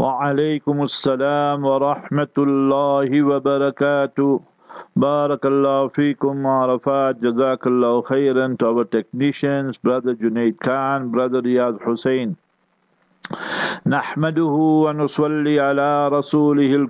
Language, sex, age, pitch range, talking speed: English, male, 50-69, 135-150 Hz, 100 wpm